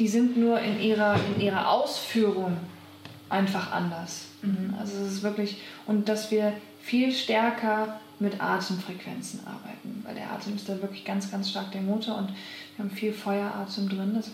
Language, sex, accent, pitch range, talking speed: German, female, German, 195-220 Hz, 165 wpm